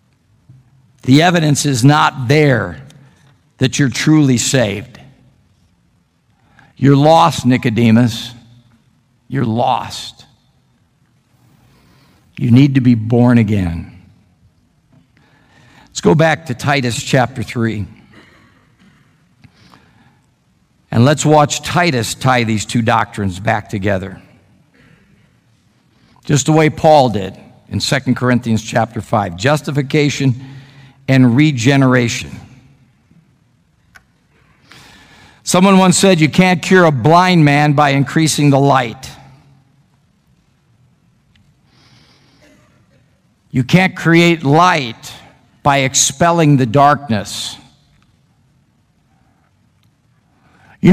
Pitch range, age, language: 120-160 Hz, 50-69, English